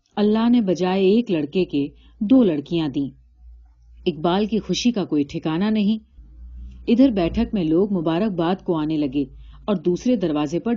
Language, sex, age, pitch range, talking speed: Urdu, female, 40-59, 160-225 Hz, 155 wpm